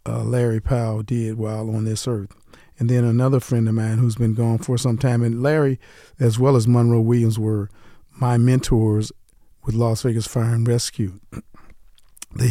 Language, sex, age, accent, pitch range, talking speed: English, male, 50-69, American, 110-120 Hz, 175 wpm